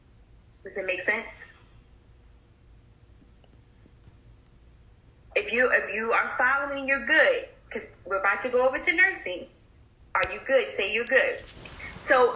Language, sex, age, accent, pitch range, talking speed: English, female, 20-39, American, 260-415 Hz, 130 wpm